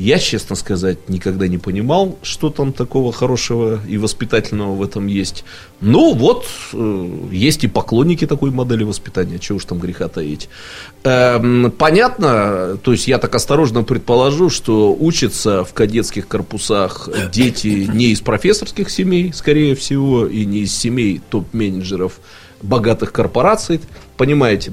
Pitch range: 100-125 Hz